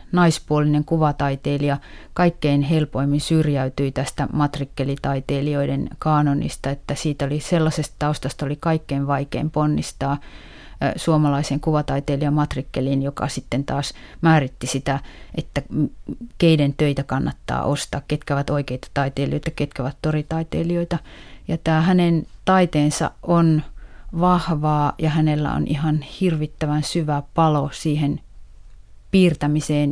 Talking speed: 105 wpm